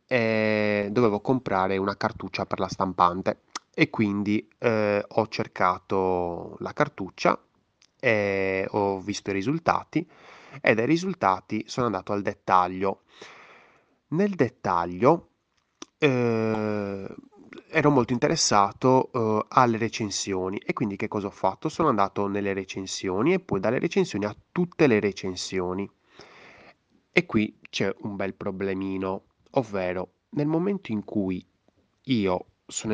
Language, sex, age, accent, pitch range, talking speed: Italian, male, 20-39, native, 95-120 Hz, 120 wpm